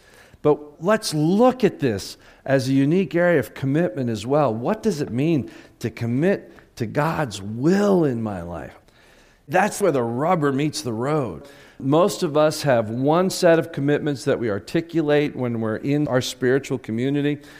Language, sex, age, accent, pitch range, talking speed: English, male, 50-69, American, 115-155 Hz, 165 wpm